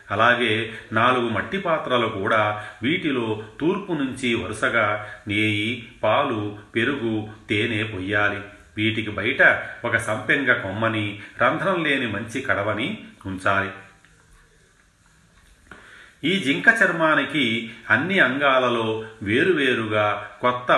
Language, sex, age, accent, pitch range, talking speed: Telugu, male, 40-59, native, 105-120 Hz, 90 wpm